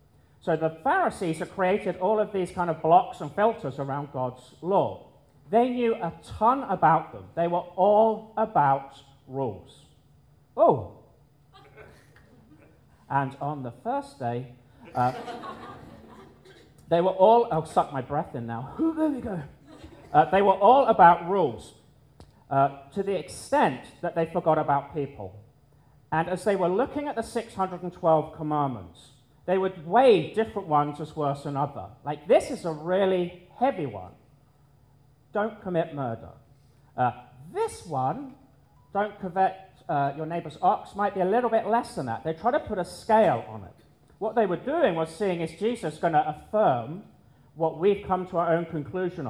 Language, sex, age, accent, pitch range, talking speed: English, male, 40-59, British, 140-190 Hz, 160 wpm